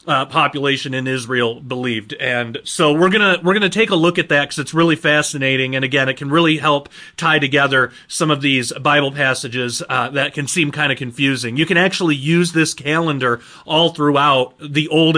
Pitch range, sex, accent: 135-165 Hz, male, American